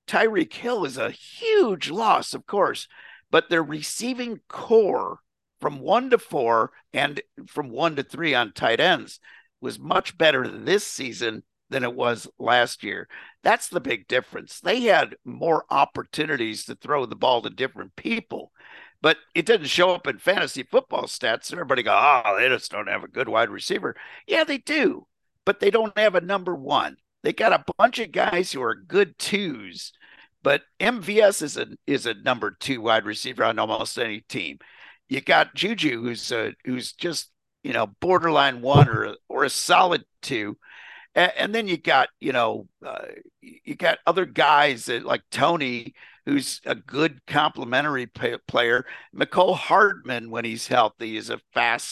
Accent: American